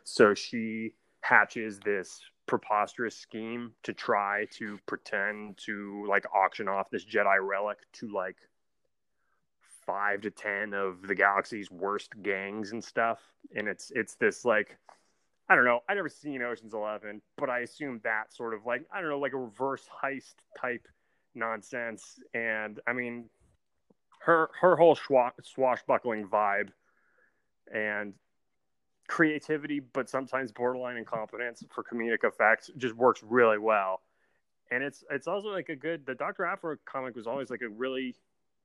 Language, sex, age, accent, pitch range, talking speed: English, male, 20-39, American, 105-130 Hz, 150 wpm